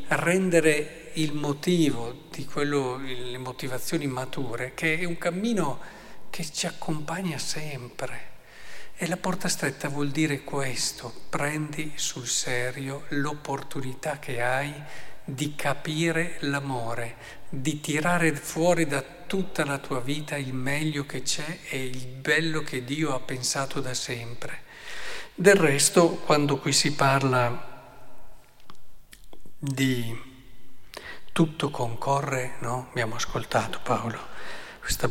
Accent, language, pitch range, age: native, Italian, 125-155 Hz, 50-69